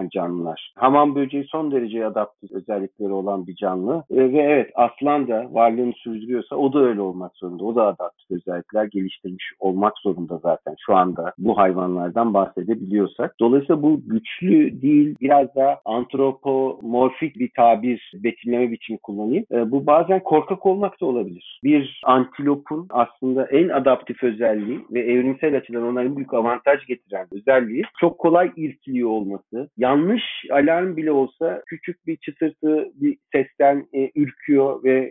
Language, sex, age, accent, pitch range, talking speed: Turkish, male, 50-69, native, 105-140 Hz, 145 wpm